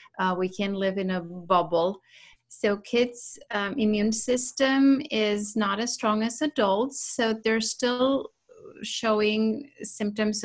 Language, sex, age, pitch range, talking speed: English, female, 30-49, 185-230 Hz, 130 wpm